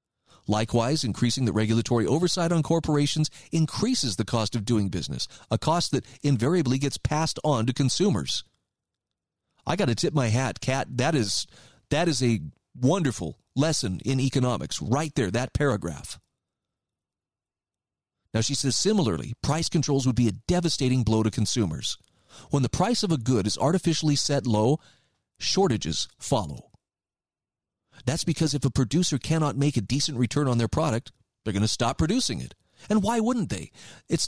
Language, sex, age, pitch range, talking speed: English, male, 40-59, 115-155 Hz, 160 wpm